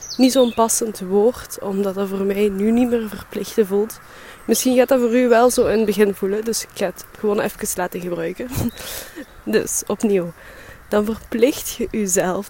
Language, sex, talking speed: Dutch, female, 185 wpm